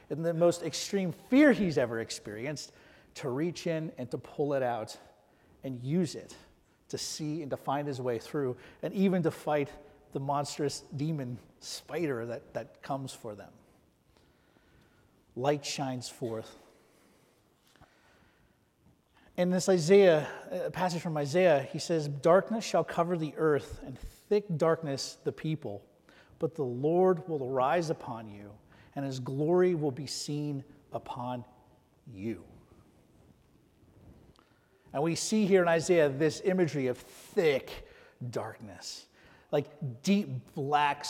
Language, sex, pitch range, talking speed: English, male, 130-175 Hz, 135 wpm